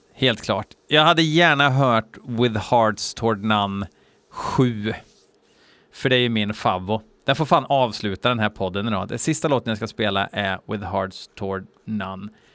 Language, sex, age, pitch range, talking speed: Swedish, male, 30-49, 105-130 Hz, 170 wpm